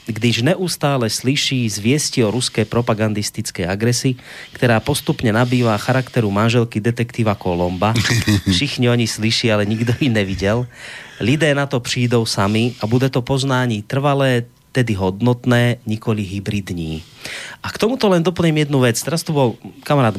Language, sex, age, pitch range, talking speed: Slovak, male, 30-49, 110-140 Hz, 140 wpm